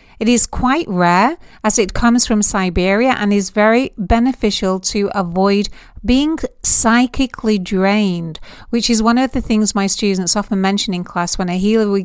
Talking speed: 170 wpm